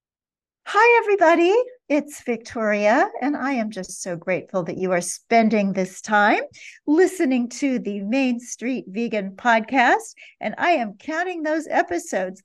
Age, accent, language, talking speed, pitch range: 50-69, American, English, 140 wpm, 190-275 Hz